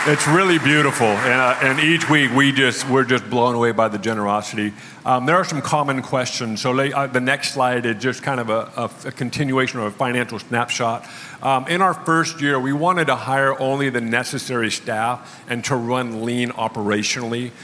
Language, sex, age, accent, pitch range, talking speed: English, male, 50-69, American, 110-130 Hz, 195 wpm